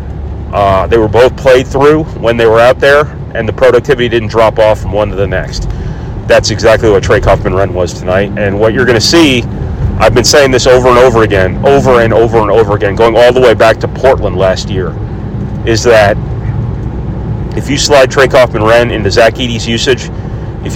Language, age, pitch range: English, 40-59, 100-125 Hz